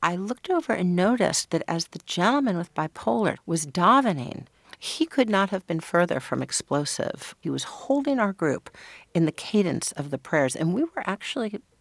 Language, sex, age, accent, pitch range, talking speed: English, female, 60-79, American, 155-210 Hz, 185 wpm